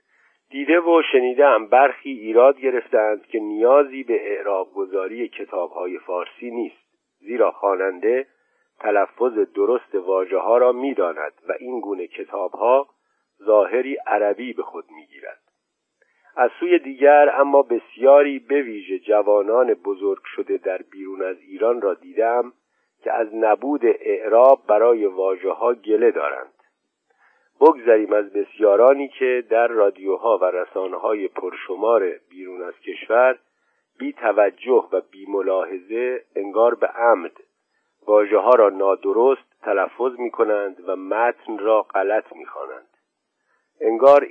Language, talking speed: Persian, 120 wpm